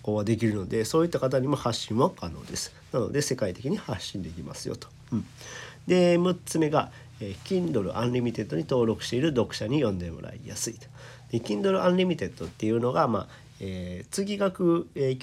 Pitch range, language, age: 105-150 Hz, Japanese, 40-59